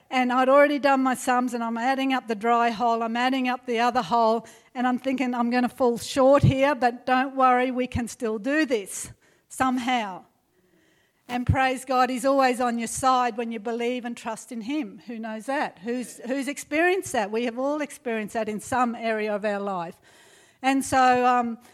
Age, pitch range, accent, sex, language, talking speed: 50-69, 225-265 Hz, Australian, female, English, 200 wpm